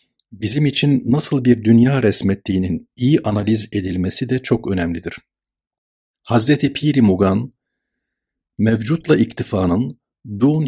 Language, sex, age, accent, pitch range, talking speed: Turkish, male, 50-69, native, 95-130 Hz, 100 wpm